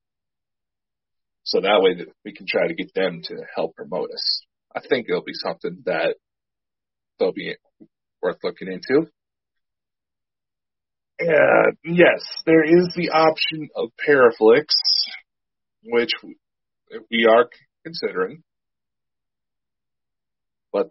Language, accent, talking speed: English, American, 110 wpm